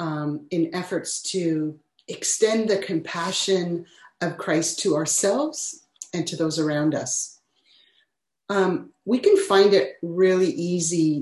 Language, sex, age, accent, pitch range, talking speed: English, female, 40-59, American, 150-185 Hz, 125 wpm